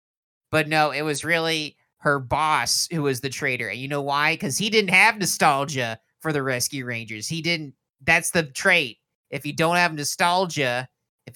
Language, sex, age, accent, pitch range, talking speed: English, male, 30-49, American, 140-205 Hz, 185 wpm